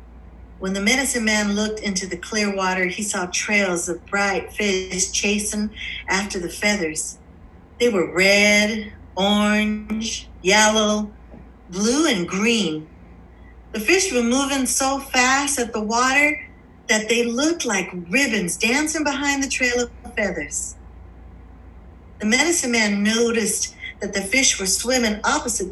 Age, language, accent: 50-69, English, American